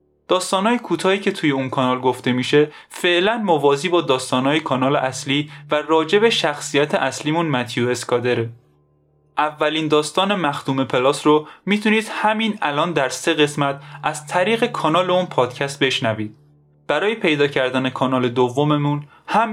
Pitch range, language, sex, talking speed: 130-170 Hz, Persian, male, 135 wpm